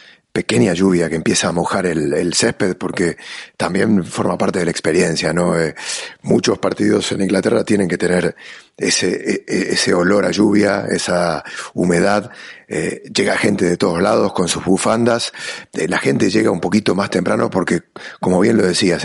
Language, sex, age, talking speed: English, male, 40-59, 170 wpm